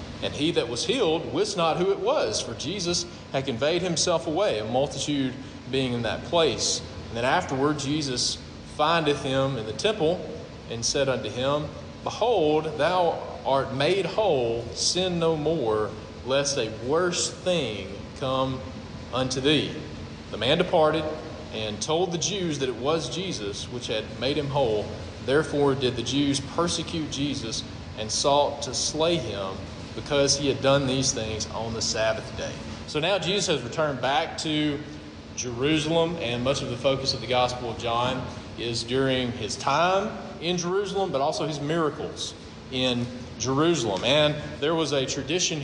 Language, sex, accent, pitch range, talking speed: English, male, American, 120-155 Hz, 160 wpm